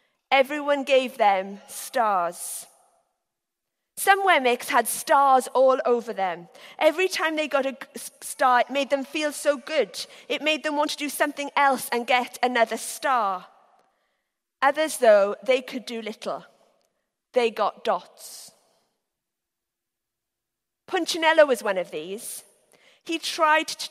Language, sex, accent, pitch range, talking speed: English, female, British, 230-305 Hz, 130 wpm